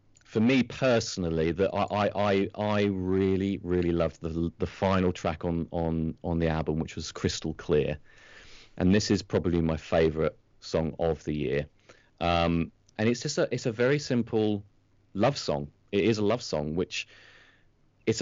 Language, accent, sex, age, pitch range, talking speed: English, British, male, 30-49, 85-110 Hz, 170 wpm